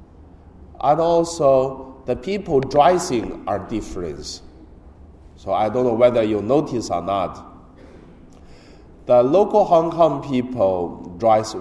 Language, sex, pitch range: Chinese, male, 85-130 Hz